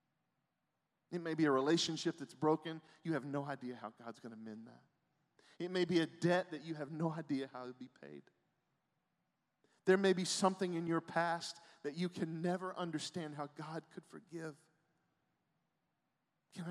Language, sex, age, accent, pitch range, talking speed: English, male, 40-59, American, 125-165 Hz, 170 wpm